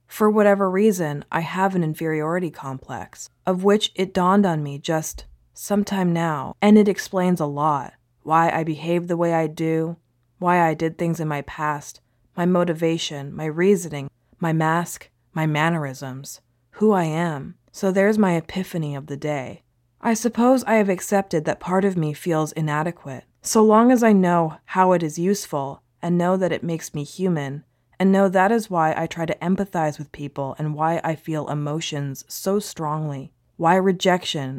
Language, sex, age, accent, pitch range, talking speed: English, female, 20-39, American, 145-185 Hz, 175 wpm